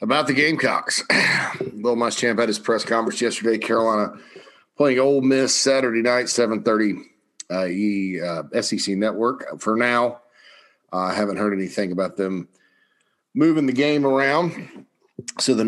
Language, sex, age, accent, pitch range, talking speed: English, male, 40-59, American, 100-120 Hz, 140 wpm